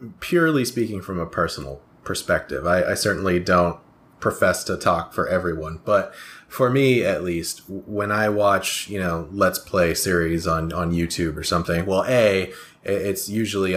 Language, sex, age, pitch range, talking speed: English, male, 30-49, 85-110 Hz, 160 wpm